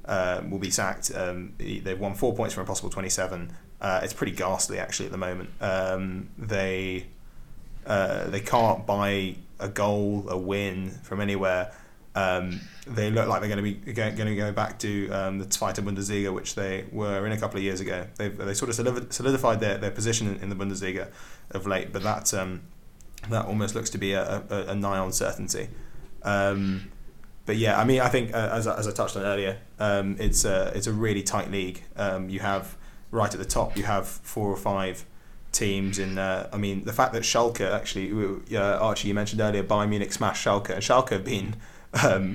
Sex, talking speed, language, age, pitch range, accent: male, 205 wpm, English, 20-39, 95-110 Hz, British